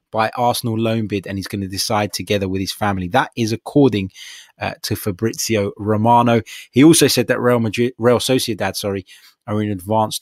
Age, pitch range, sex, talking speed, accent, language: 20-39, 105-130 Hz, male, 190 wpm, British, English